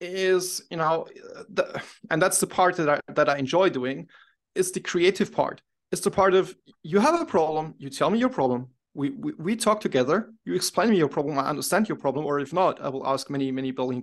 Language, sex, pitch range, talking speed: English, male, 145-190 Hz, 235 wpm